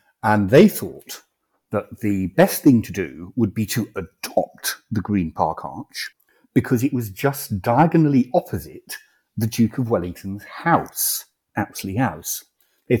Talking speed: 145 wpm